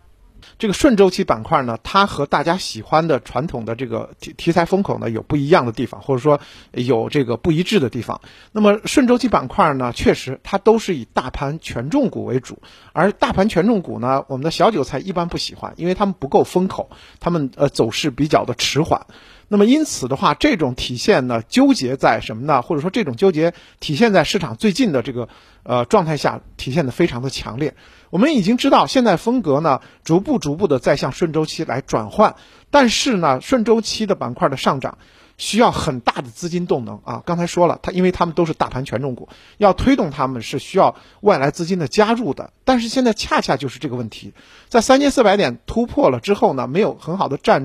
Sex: male